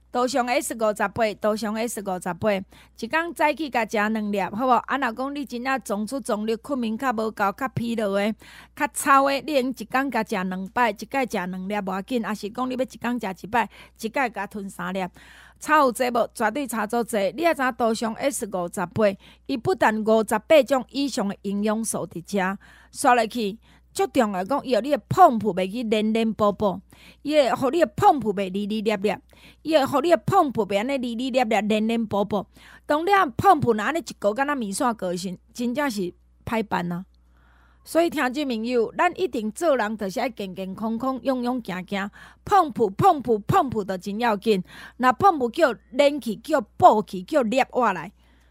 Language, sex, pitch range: Chinese, female, 205-270 Hz